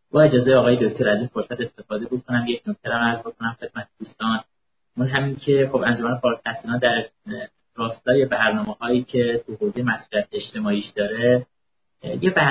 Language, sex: Persian, male